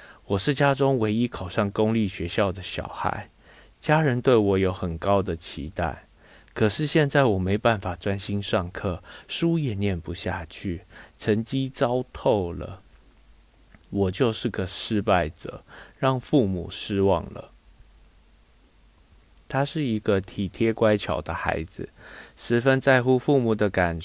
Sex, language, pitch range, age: male, Chinese, 90-115 Hz, 20-39